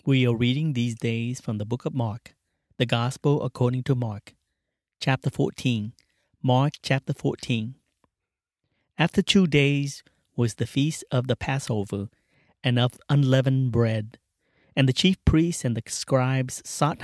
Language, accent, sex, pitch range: English, American, male, 115-140 Hz